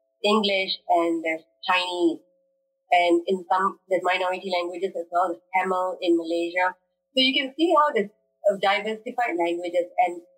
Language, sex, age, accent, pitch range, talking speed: English, female, 30-49, Indian, 170-215 Hz, 140 wpm